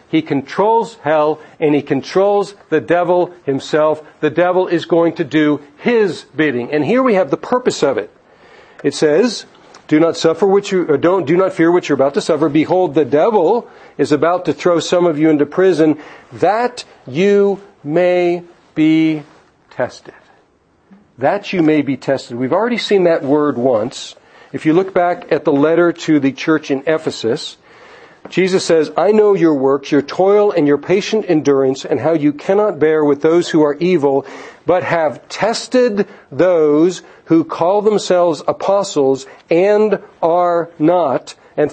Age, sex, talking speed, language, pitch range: 50-69, male, 165 wpm, English, 150-190 Hz